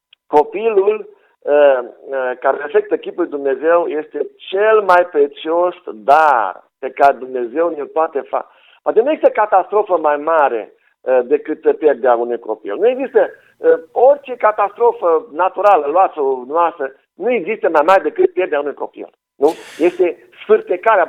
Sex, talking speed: male, 130 wpm